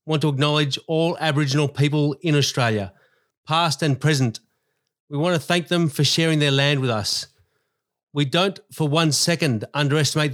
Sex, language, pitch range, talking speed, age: male, English, 135-170 Hz, 165 wpm, 30-49